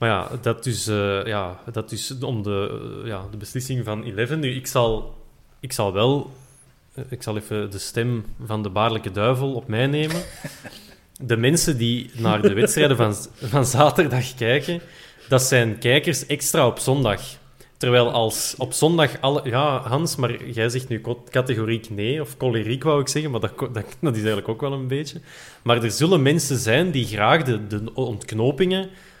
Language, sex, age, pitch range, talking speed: Dutch, male, 20-39, 110-140 Hz, 185 wpm